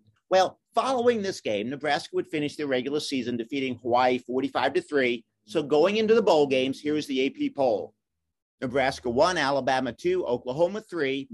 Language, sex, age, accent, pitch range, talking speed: English, male, 50-69, American, 135-180 Hz, 160 wpm